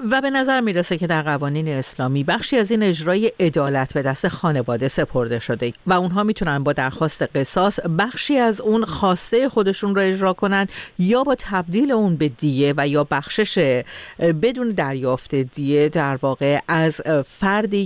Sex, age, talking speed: female, 50-69, 160 wpm